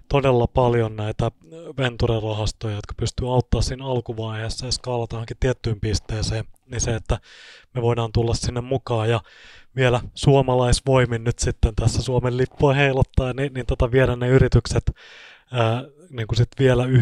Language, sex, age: Finnish, male, 20-39